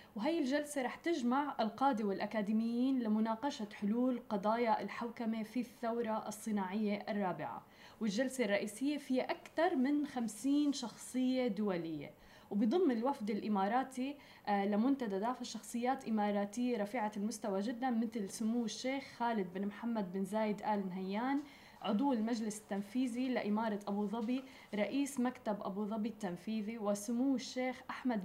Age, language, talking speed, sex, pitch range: 20-39, Arabic, 115 wpm, female, 210-255 Hz